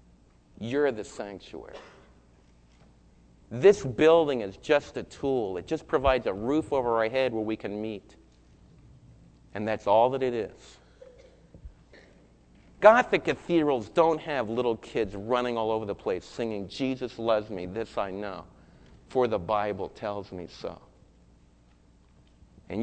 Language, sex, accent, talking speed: English, male, American, 135 wpm